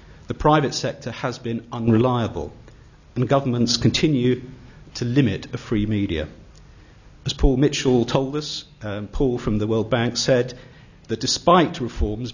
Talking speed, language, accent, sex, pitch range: 140 wpm, English, British, male, 105-130 Hz